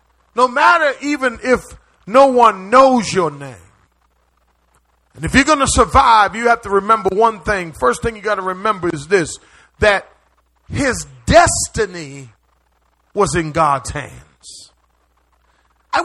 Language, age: English, 40-59